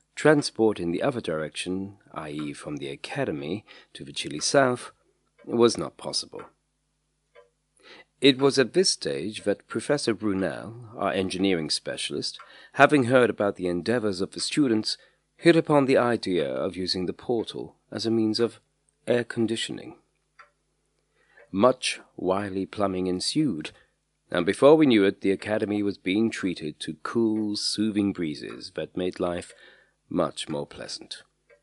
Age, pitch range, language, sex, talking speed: 40-59, 95-130 Hz, English, male, 140 wpm